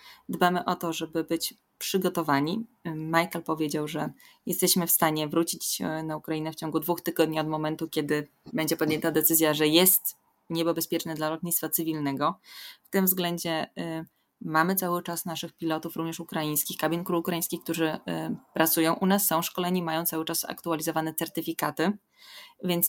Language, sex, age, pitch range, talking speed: Polish, female, 20-39, 155-180 Hz, 150 wpm